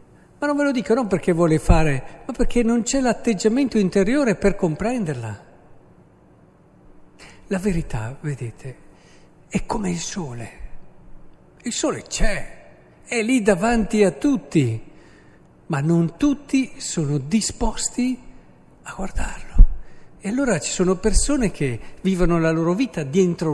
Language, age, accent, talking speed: Italian, 60-79, native, 130 wpm